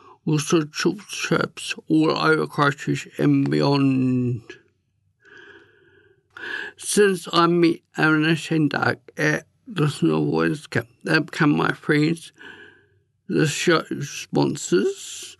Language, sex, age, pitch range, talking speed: English, male, 60-79, 145-185 Hz, 95 wpm